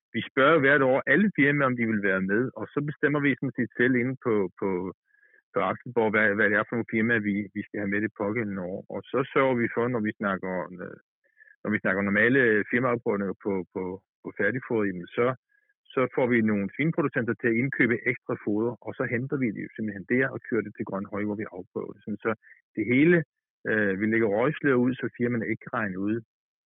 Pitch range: 105-125 Hz